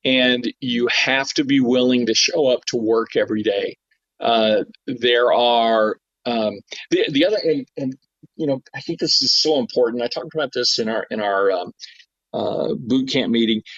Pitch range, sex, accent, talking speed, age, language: 115-135 Hz, male, American, 185 wpm, 50-69, English